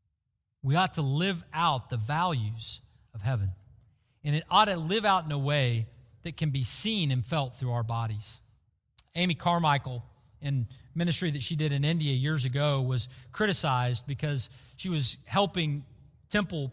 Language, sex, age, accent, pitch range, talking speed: English, male, 40-59, American, 120-160 Hz, 160 wpm